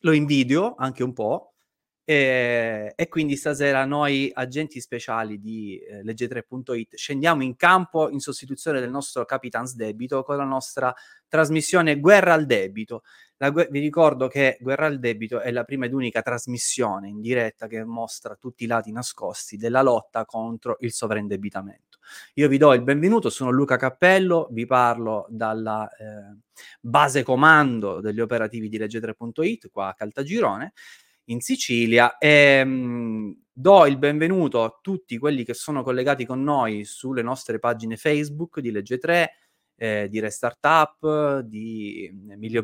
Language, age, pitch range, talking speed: Italian, 20-39, 115-150 Hz, 140 wpm